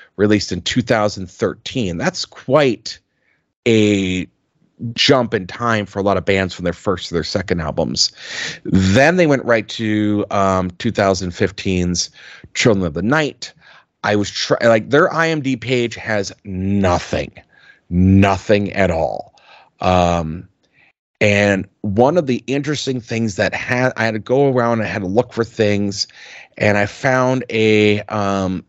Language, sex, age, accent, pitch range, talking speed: English, male, 30-49, American, 100-125 Hz, 145 wpm